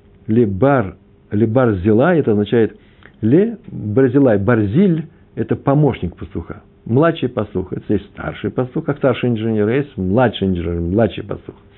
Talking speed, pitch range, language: 125 wpm, 95-120 Hz, Russian